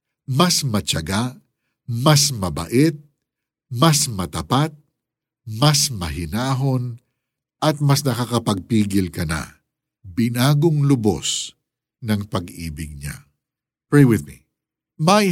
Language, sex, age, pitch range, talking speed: Filipino, male, 50-69, 100-150 Hz, 85 wpm